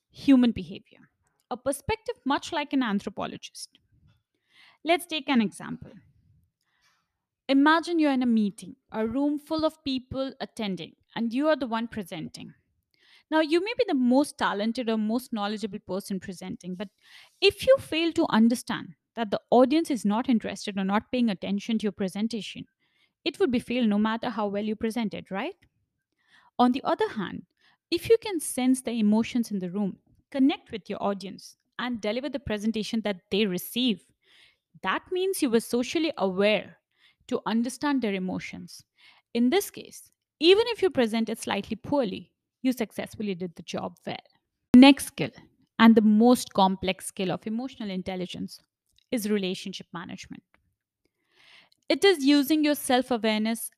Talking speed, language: 155 wpm, English